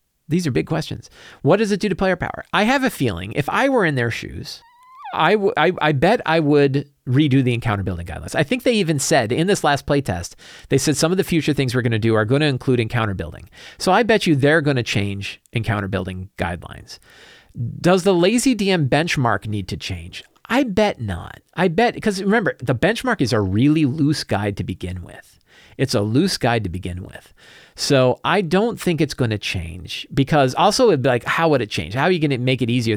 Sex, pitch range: male, 105-155 Hz